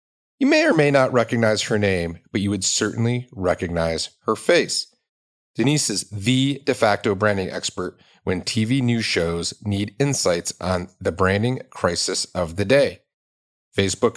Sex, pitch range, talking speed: male, 95-125 Hz, 150 wpm